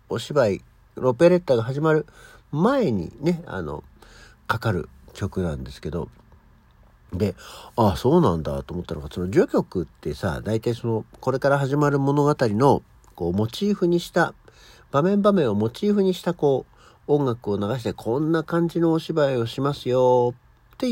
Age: 50-69